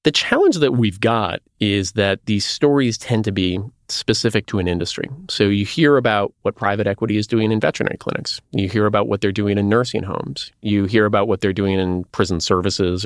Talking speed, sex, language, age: 210 wpm, male, English, 30-49